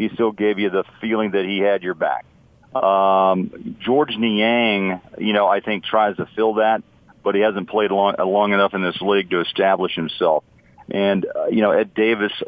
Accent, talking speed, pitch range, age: American, 195 wpm, 95-110 Hz, 50-69